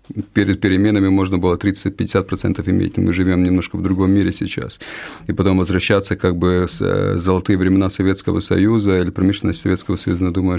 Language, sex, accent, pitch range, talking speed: Russian, male, native, 90-100 Hz, 160 wpm